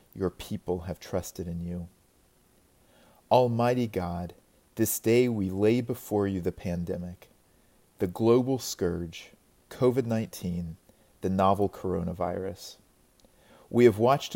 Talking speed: 110 wpm